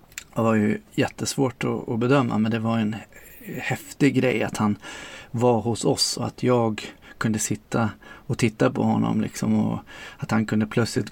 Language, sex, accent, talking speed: Swedish, male, native, 175 wpm